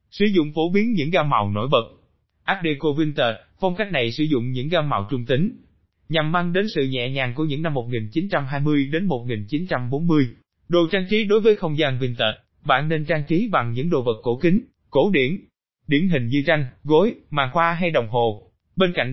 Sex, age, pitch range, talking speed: male, 20-39, 130-180 Hz, 205 wpm